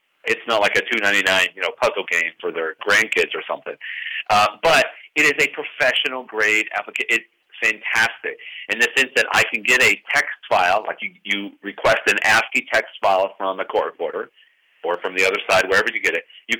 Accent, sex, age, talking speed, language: American, male, 40-59, 205 wpm, English